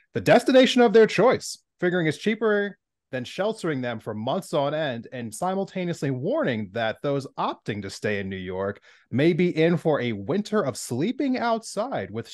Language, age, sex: English, 30-49, male